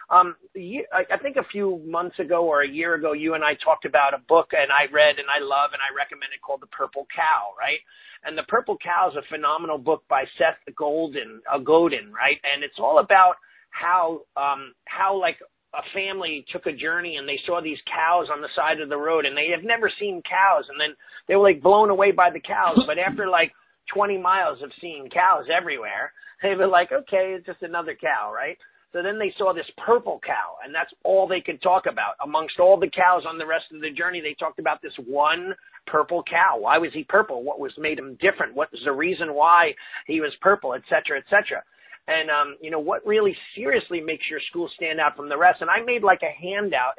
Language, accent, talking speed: English, American, 225 wpm